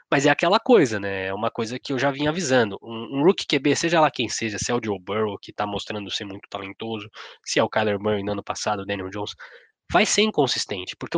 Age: 20-39